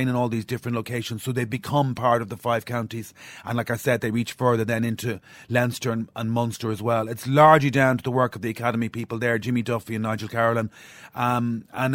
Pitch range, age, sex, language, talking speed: 110-135 Hz, 30-49, male, English, 230 wpm